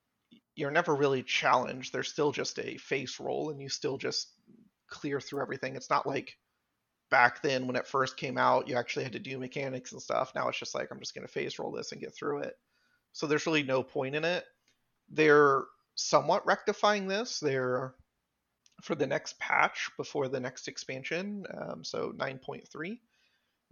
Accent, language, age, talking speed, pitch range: American, English, 30-49, 185 wpm, 130-165 Hz